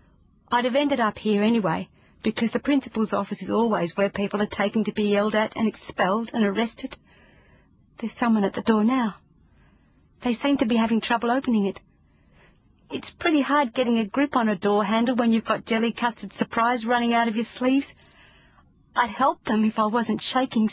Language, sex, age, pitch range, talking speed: English, female, 40-59, 200-245 Hz, 190 wpm